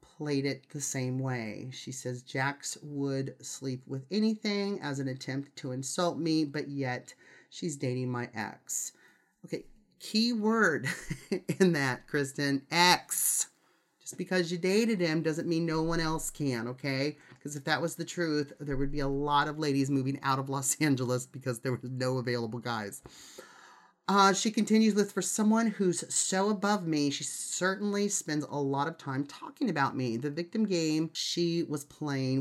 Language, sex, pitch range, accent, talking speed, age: English, male, 135-180 Hz, American, 170 wpm, 30-49